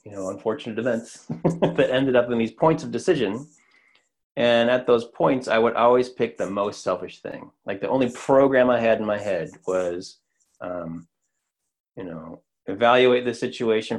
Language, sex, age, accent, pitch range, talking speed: English, male, 30-49, American, 100-125 Hz, 170 wpm